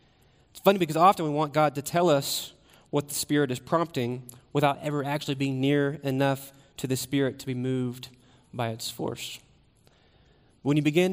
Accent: American